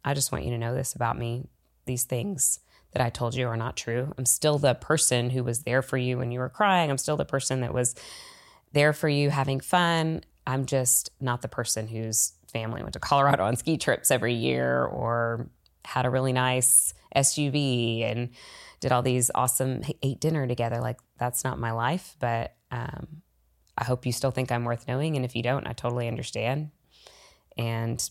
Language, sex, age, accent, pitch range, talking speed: English, female, 20-39, American, 120-140 Hz, 200 wpm